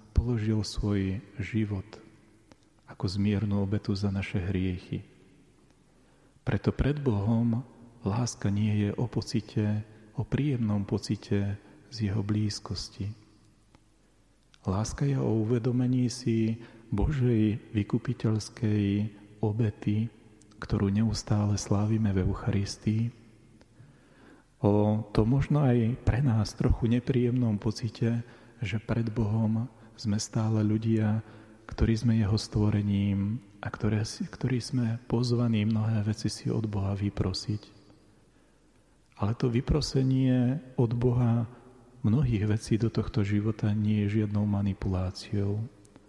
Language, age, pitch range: Slovak, 40-59, 105-115 Hz